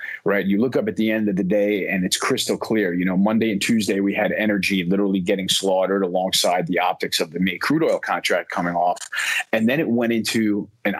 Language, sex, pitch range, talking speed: English, male, 95-105 Hz, 230 wpm